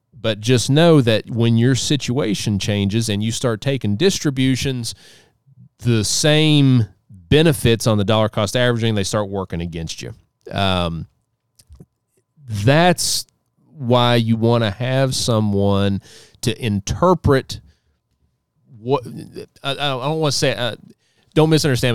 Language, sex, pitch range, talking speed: English, male, 105-135 Hz, 125 wpm